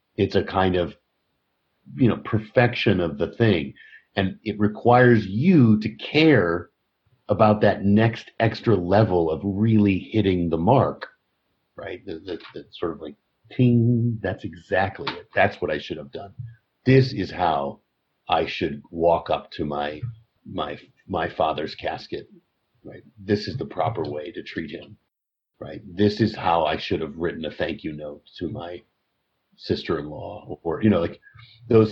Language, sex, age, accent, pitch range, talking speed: English, male, 50-69, American, 90-120 Hz, 155 wpm